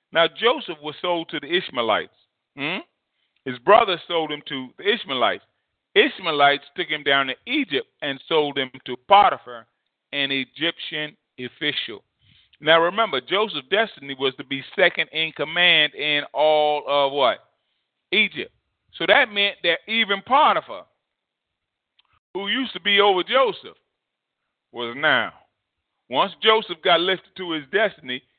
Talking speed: 135 wpm